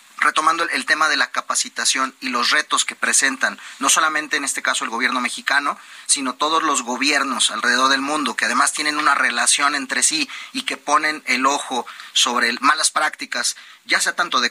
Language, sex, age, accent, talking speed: Spanish, male, 40-59, Mexican, 185 wpm